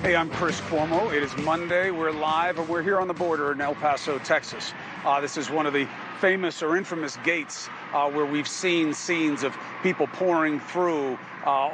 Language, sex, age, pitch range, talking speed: English, male, 40-59, 145-170 Hz, 200 wpm